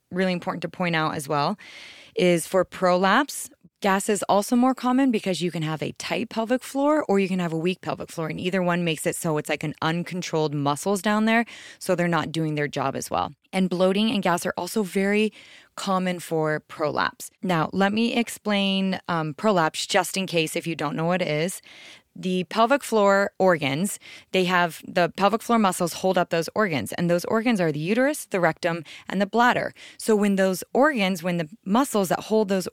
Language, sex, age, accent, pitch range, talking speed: English, female, 20-39, American, 165-200 Hz, 205 wpm